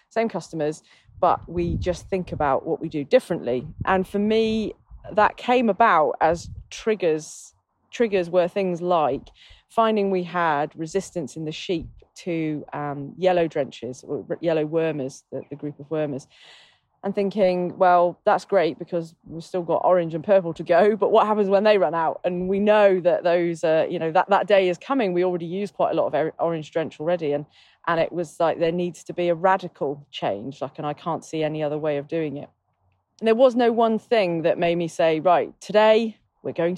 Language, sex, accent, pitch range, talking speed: English, female, British, 160-195 Hz, 200 wpm